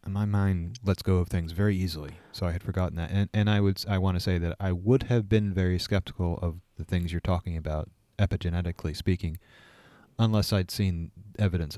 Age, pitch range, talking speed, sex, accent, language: 30-49, 85-105 Hz, 215 wpm, male, American, English